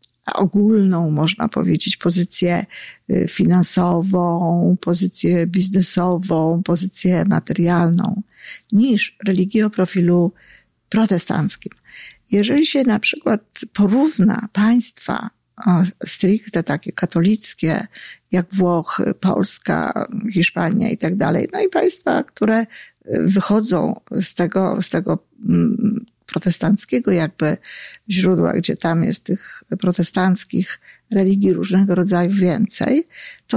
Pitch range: 180-220 Hz